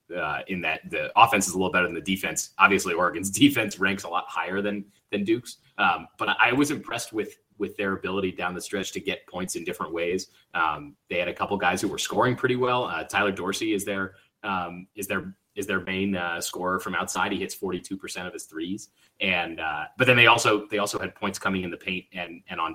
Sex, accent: male, American